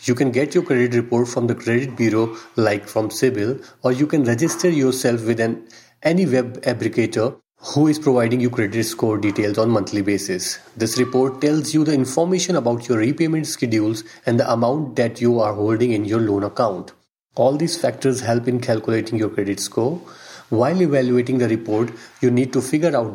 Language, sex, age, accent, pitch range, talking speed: English, male, 40-59, Indian, 115-135 Hz, 185 wpm